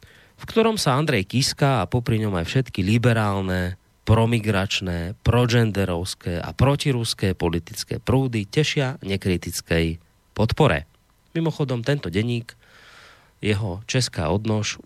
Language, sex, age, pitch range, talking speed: Slovak, male, 30-49, 95-135 Hz, 105 wpm